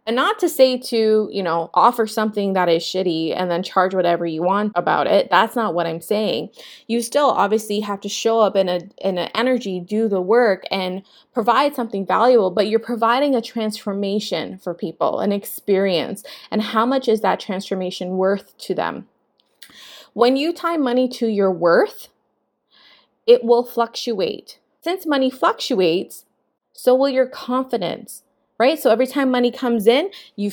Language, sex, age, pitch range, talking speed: English, female, 20-39, 195-245 Hz, 170 wpm